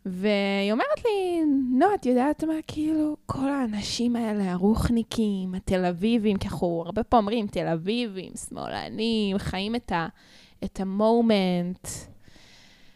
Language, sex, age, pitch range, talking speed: Hebrew, female, 10-29, 190-285 Hz, 105 wpm